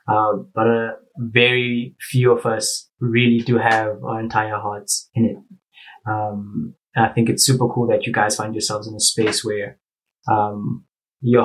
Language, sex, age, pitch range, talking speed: English, male, 20-39, 110-125 Hz, 180 wpm